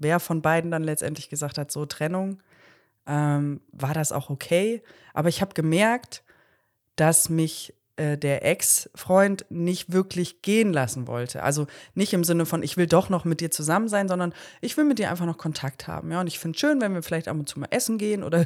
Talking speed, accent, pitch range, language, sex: 210 wpm, German, 150-175 Hz, German, female